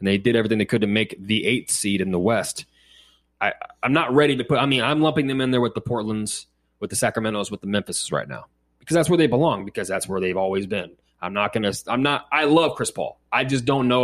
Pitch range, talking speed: 105-150 Hz, 265 wpm